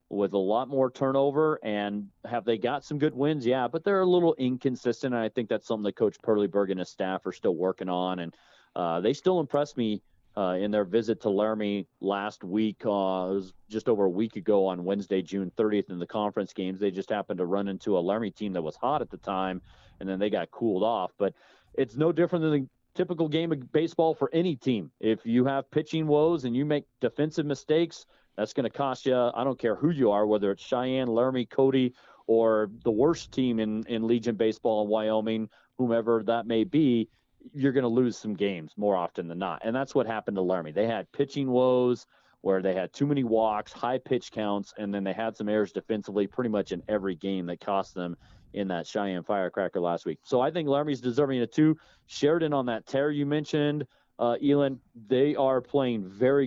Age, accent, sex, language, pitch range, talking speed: 40-59, American, male, English, 100-135 Hz, 220 wpm